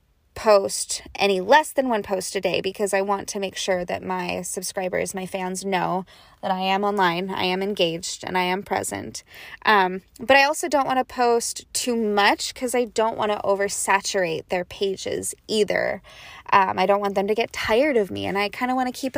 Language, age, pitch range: English, 20-39, 195-245 Hz